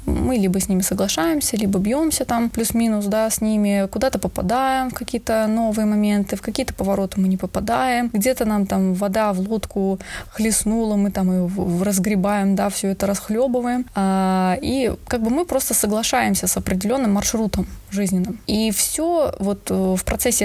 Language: Russian